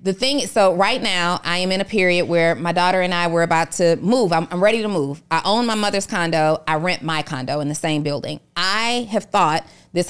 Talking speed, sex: 250 wpm, female